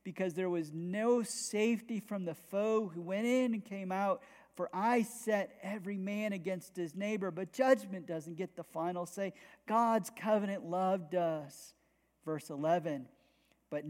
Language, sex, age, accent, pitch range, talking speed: English, male, 40-59, American, 170-205 Hz, 155 wpm